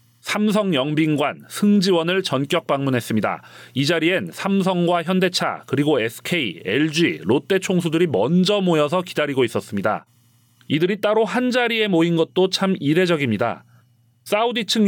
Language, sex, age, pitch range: Korean, male, 40-59, 150-190 Hz